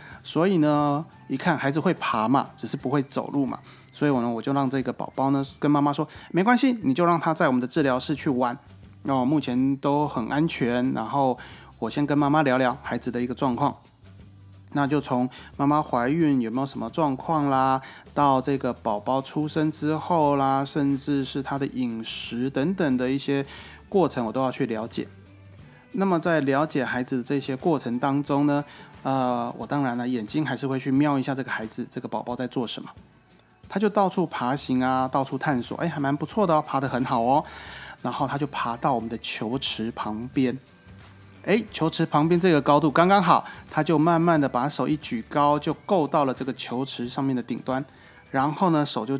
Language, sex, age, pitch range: Chinese, male, 20-39, 125-155 Hz